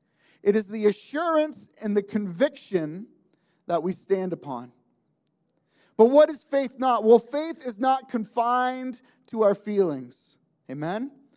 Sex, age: male, 30-49